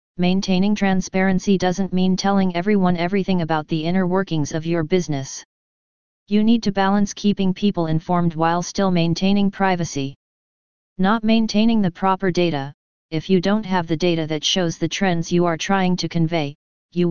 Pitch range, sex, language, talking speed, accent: 165-195 Hz, female, English, 160 wpm, American